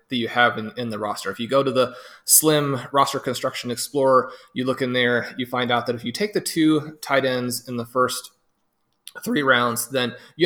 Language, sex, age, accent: English, male, 30-49, American